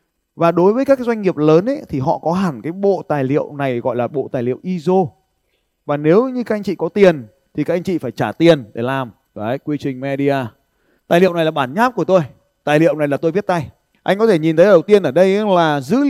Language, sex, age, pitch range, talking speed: Vietnamese, male, 20-39, 155-210 Hz, 260 wpm